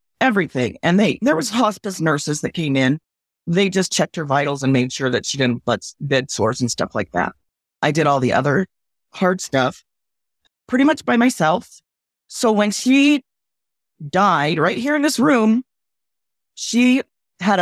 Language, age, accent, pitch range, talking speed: English, 30-49, American, 165-235 Hz, 170 wpm